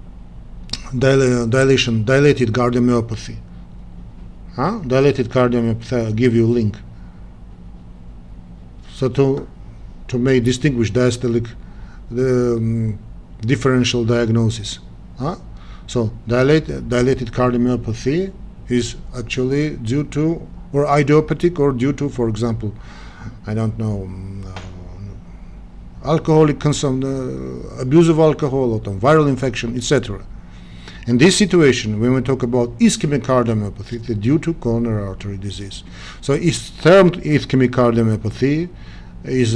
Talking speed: 105 wpm